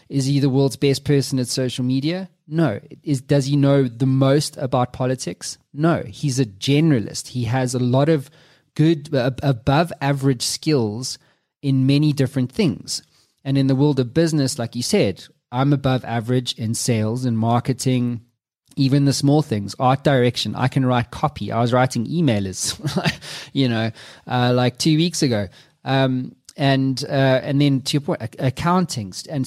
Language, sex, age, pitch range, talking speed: English, male, 20-39, 120-145 Hz, 165 wpm